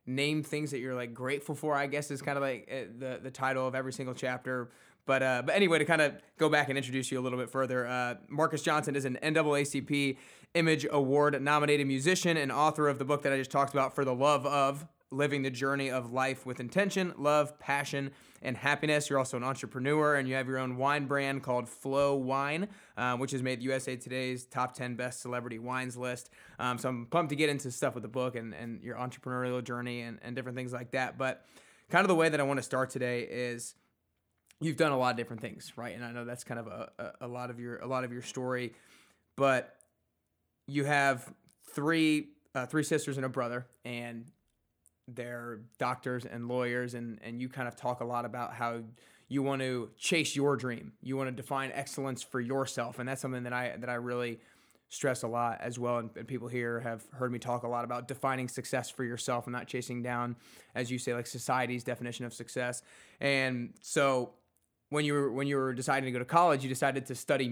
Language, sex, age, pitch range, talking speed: English, male, 20-39, 125-140 Hz, 225 wpm